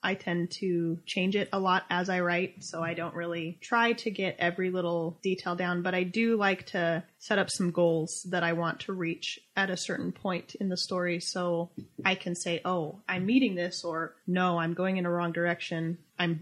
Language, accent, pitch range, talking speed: English, American, 170-195 Hz, 215 wpm